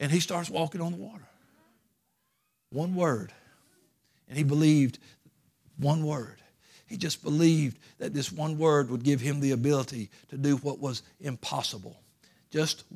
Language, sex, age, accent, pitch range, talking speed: English, male, 60-79, American, 140-165 Hz, 150 wpm